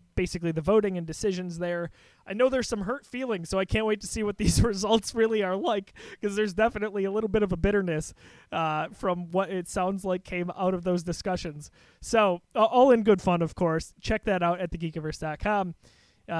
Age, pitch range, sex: 20-39, 165-200 Hz, male